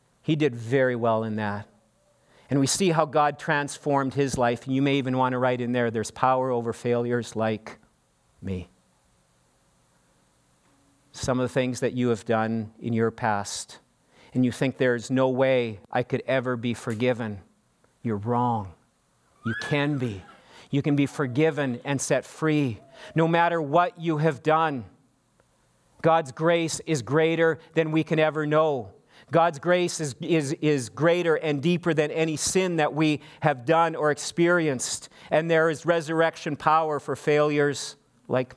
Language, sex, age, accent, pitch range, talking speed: English, male, 40-59, American, 115-150 Hz, 155 wpm